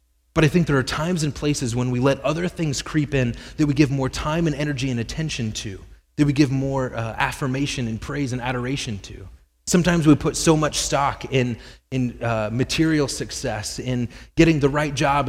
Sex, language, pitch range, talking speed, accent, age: male, English, 105-150 Hz, 205 wpm, American, 30-49